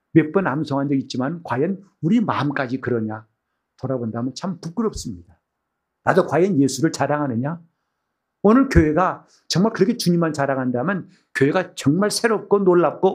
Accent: native